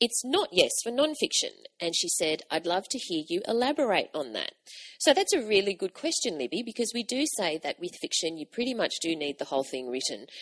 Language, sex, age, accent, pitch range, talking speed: English, female, 30-49, Australian, 160-260 Hz, 225 wpm